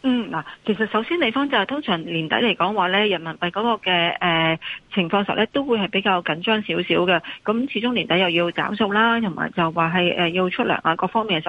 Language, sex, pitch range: Chinese, female, 180-235 Hz